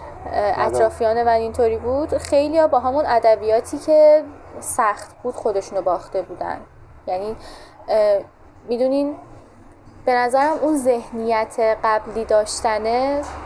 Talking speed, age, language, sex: 105 wpm, 10-29, Persian, female